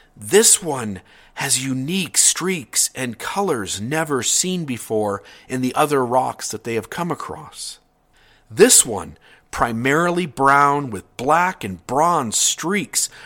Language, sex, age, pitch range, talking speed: English, male, 50-69, 120-160 Hz, 125 wpm